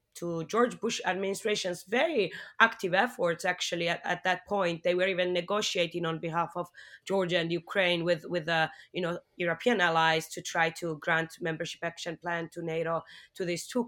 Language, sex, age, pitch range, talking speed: English, female, 20-39, 160-185 Hz, 175 wpm